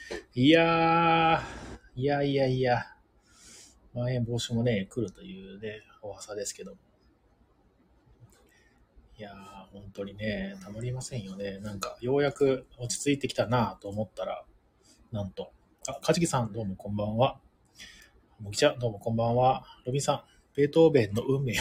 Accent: native